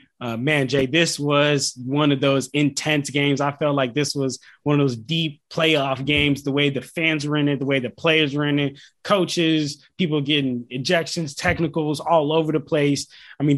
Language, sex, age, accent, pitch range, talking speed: English, male, 20-39, American, 130-160 Hz, 205 wpm